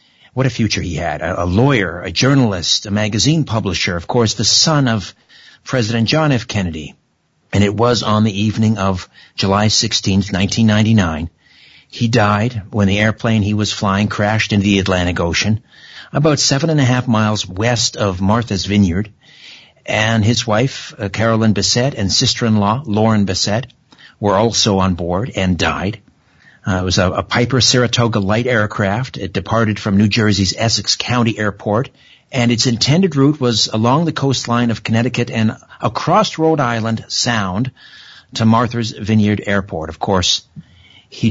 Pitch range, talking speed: 100-120 Hz, 160 wpm